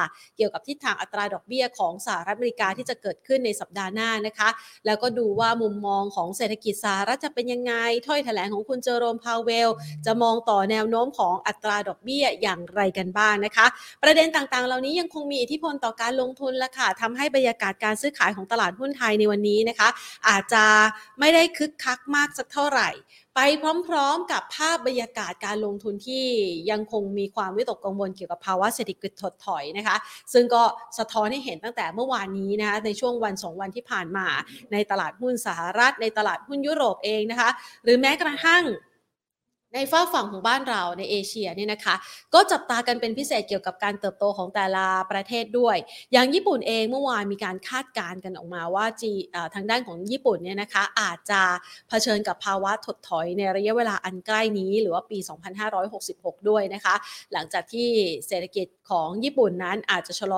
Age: 30-49